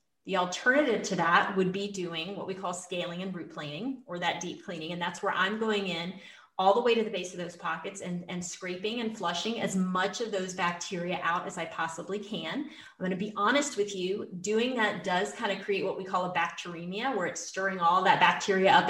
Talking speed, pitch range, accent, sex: 230 wpm, 180-215 Hz, American, female